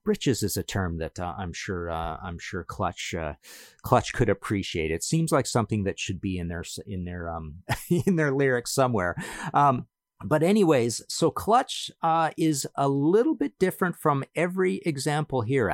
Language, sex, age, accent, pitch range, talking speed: English, male, 40-59, American, 105-155 Hz, 180 wpm